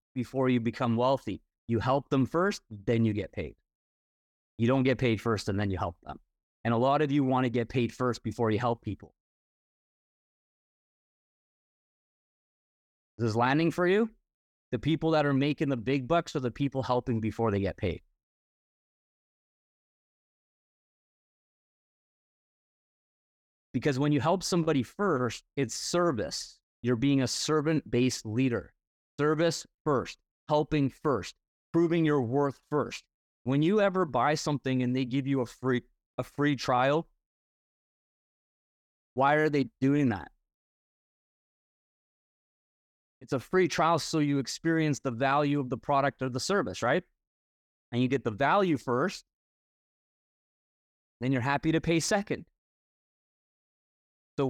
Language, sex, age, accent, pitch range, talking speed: English, male, 30-49, American, 120-155 Hz, 140 wpm